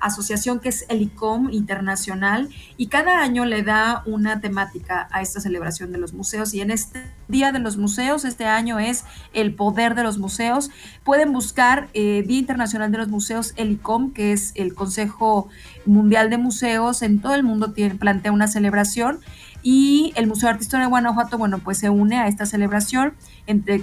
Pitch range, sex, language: 200-245 Hz, female, Spanish